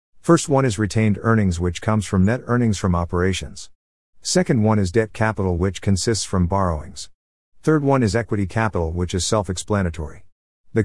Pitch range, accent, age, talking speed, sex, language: 90-110 Hz, American, 50-69, 165 wpm, male, English